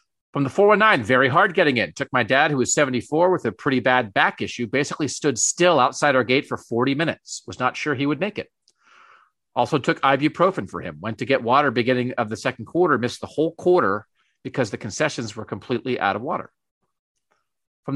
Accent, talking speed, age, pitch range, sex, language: American, 205 wpm, 40-59, 120-165 Hz, male, English